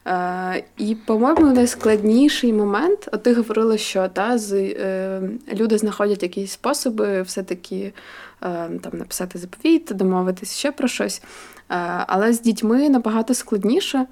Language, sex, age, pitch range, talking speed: Ukrainian, female, 20-39, 195-235 Hz, 130 wpm